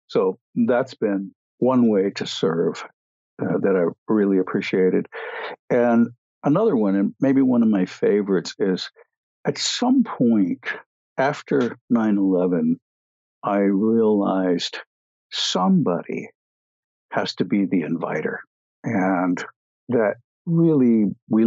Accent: American